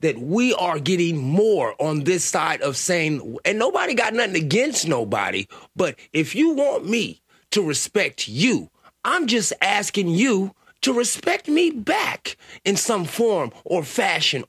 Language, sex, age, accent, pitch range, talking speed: English, male, 30-49, American, 160-230 Hz, 155 wpm